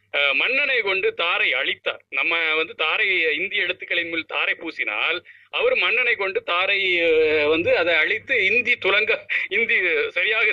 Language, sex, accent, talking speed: Tamil, male, native, 125 wpm